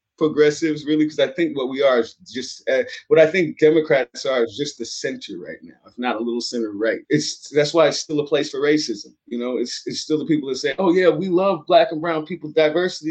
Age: 20-39